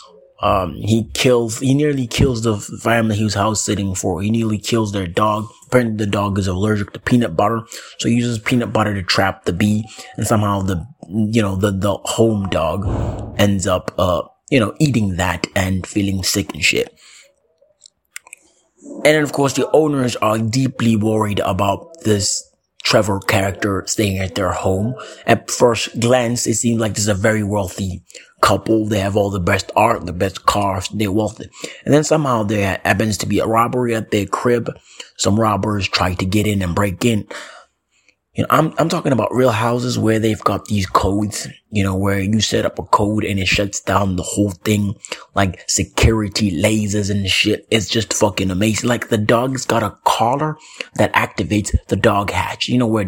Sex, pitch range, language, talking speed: male, 100-115 Hz, English, 190 wpm